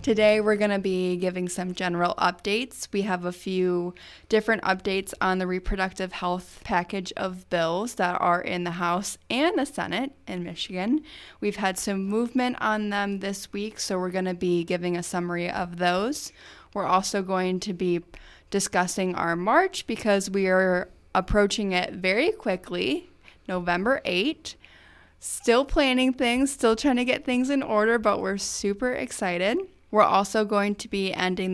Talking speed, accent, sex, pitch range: 165 wpm, American, female, 180-220 Hz